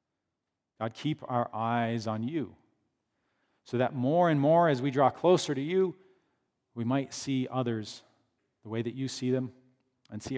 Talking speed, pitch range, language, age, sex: 170 wpm, 110-140 Hz, English, 40-59, male